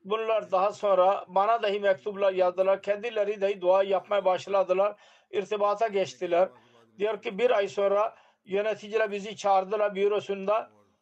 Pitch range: 185-215 Hz